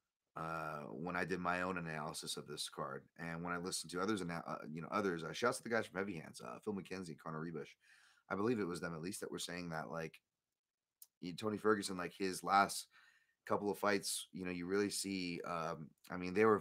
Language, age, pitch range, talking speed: English, 30-49, 85-105 Hz, 240 wpm